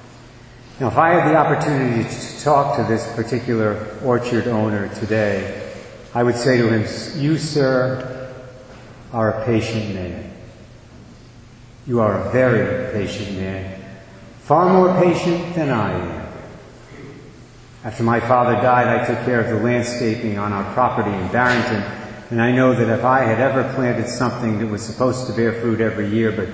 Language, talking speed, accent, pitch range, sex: English, 160 wpm, American, 110-130 Hz, male